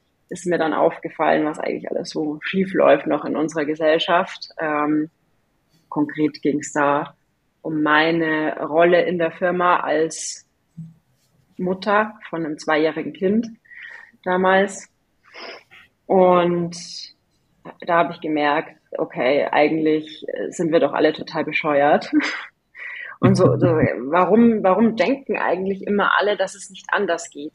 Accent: German